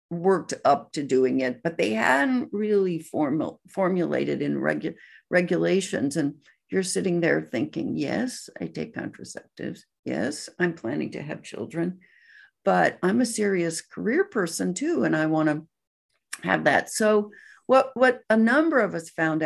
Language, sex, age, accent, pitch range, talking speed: English, female, 60-79, American, 155-200 Hz, 150 wpm